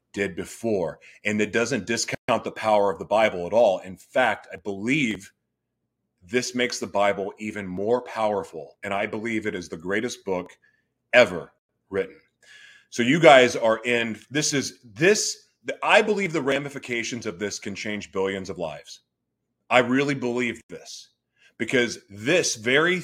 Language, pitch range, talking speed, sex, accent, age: English, 110-150 Hz, 155 wpm, male, American, 30-49